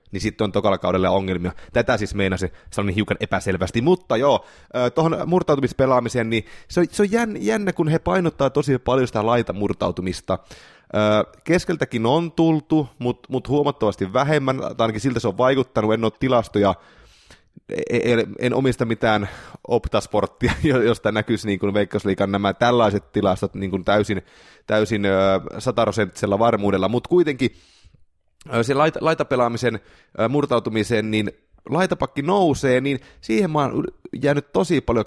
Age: 20-39